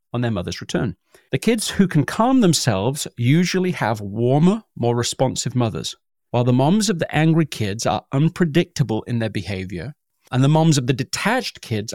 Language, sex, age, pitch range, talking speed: English, male, 40-59, 120-170 Hz, 175 wpm